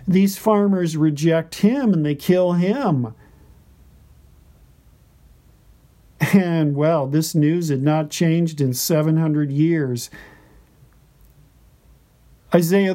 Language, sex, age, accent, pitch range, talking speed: English, male, 50-69, American, 145-190 Hz, 90 wpm